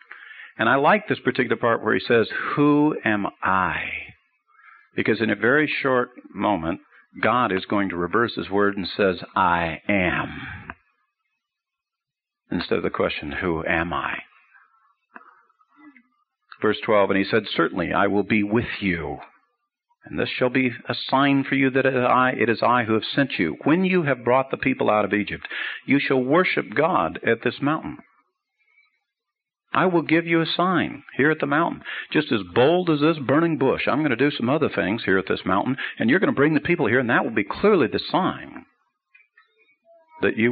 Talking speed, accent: 185 wpm, American